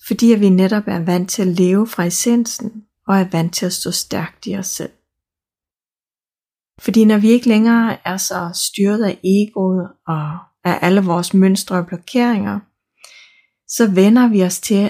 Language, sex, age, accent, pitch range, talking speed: Danish, female, 30-49, native, 175-210 Hz, 170 wpm